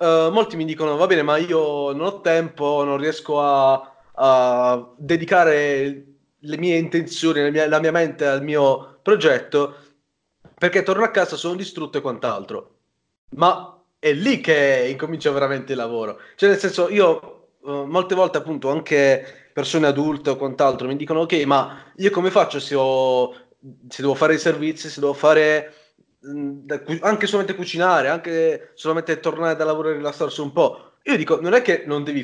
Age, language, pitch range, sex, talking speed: 20-39, Italian, 140-180 Hz, male, 170 wpm